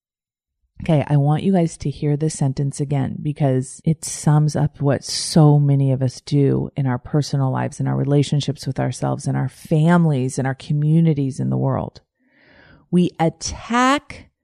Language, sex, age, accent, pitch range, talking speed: English, female, 40-59, American, 140-175 Hz, 165 wpm